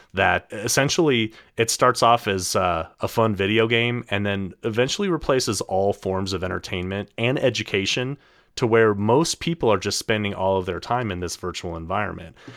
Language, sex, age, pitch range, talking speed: English, male, 30-49, 90-115 Hz, 170 wpm